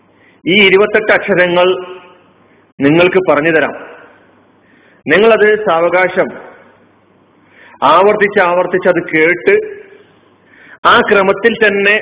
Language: Malayalam